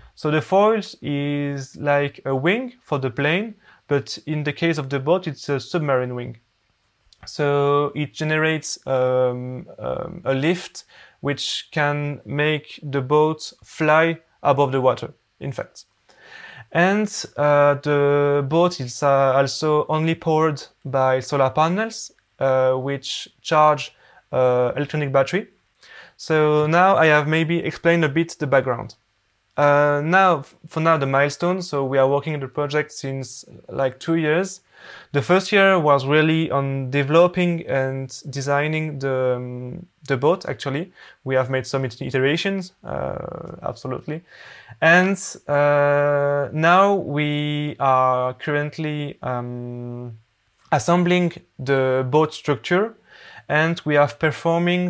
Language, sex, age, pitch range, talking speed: English, male, 20-39, 135-160 Hz, 130 wpm